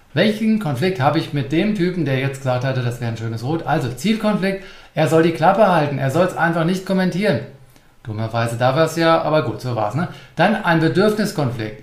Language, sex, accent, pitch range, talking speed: German, male, German, 130-175 Hz, 220 wpm